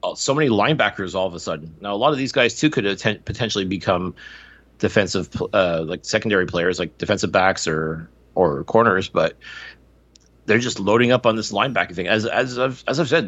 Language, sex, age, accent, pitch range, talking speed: English, male, 30-49, American, 90-120 Hz, 190 wpm